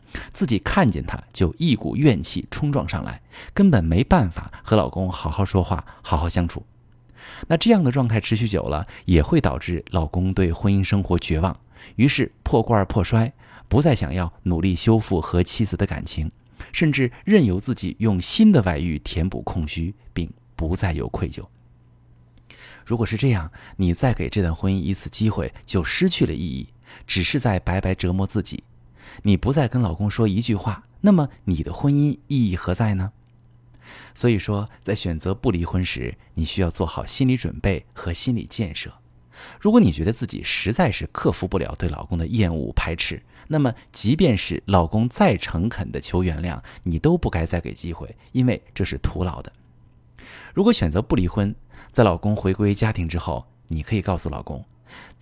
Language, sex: Chinese, male